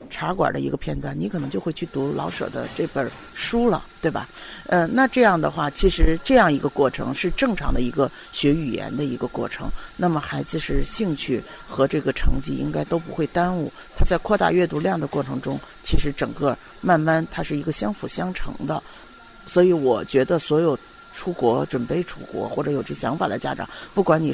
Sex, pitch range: female, 145-185 Hz